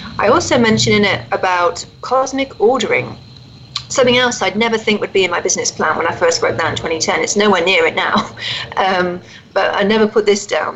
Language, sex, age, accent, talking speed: English, female, 40-59, British, 210 wpm